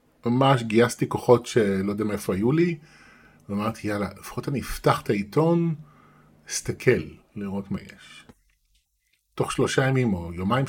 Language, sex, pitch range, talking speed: Hebrew, male, 95-140 Hz, 135 wpm